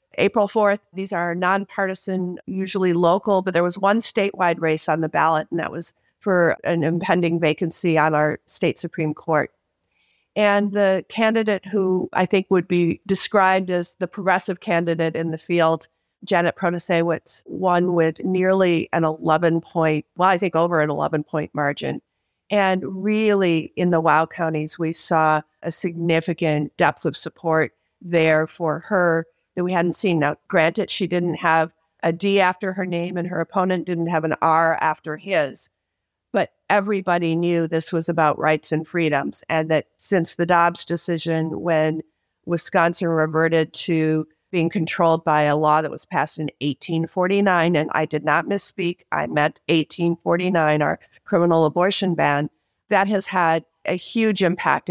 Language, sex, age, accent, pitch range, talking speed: English, female, 50-69, American, 160-185 Hz, 155 wpm